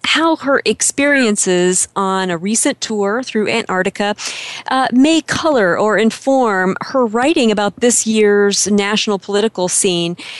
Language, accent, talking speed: English, American, 125 wpm